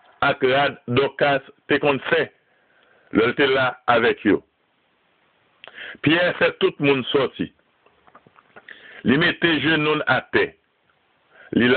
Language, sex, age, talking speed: French, male, 60-79, 120 wpm